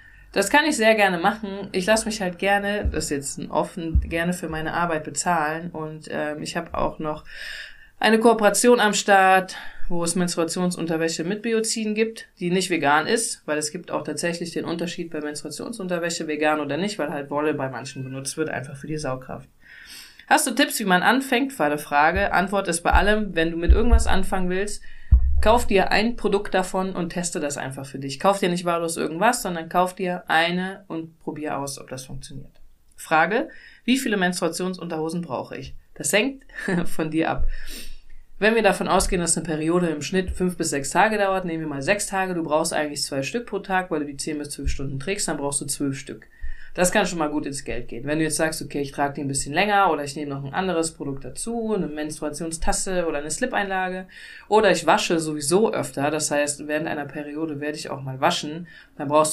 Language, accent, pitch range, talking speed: German, German, 150-195 Hz, 210 wpm